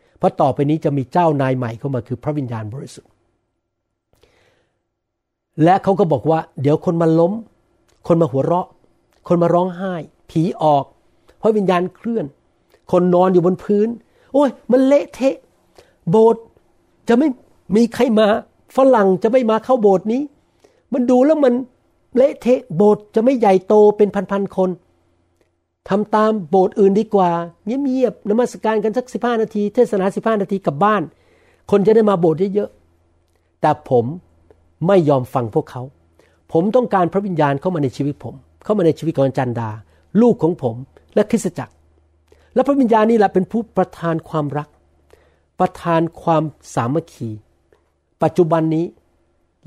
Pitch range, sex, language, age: 135-210 Hz, male, Thai, 60-79